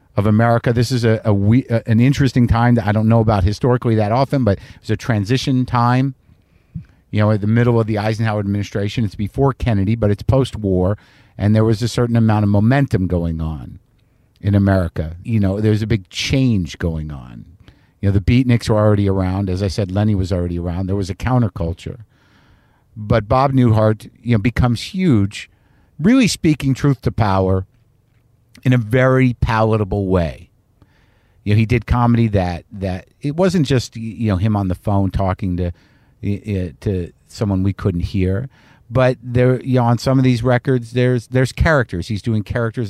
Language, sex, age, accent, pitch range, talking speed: English, male, 50-69, American, 100-120 Hz, 185 wpm